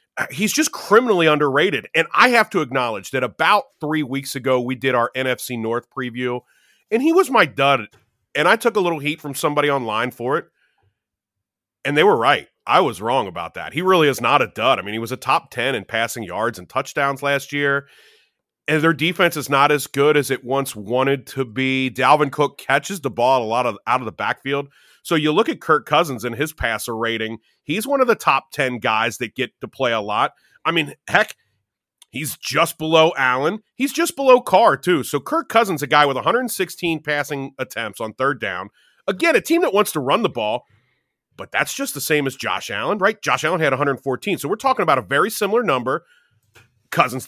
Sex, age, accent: male, 30-49, American